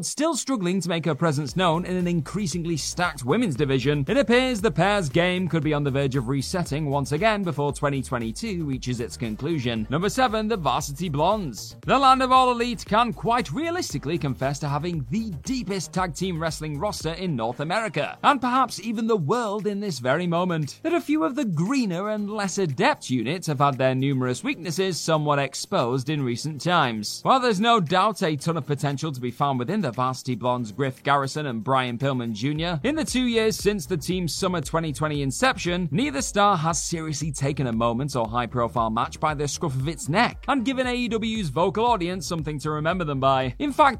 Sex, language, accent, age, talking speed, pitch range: male, English, British, 30-49, 200 wpm, 140-210 Hz